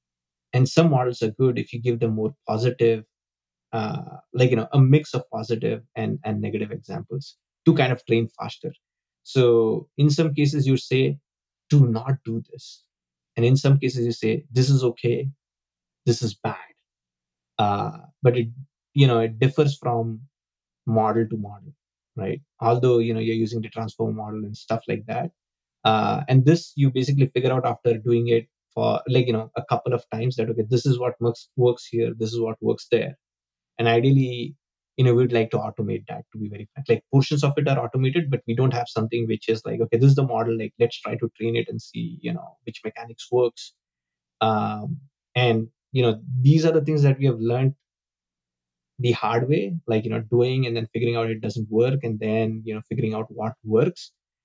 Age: 20-39